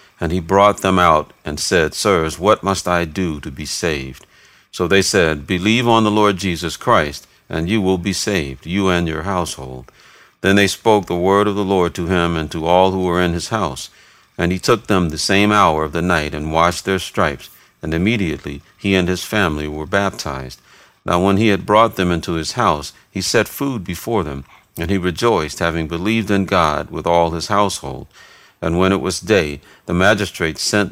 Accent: American